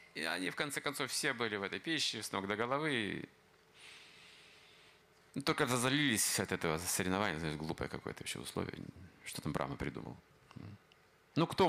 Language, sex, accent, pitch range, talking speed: Russian, male, native, 100-130 Hz, 160 wpm